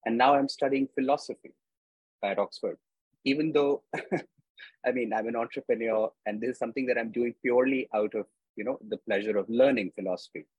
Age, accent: 30-49, Indian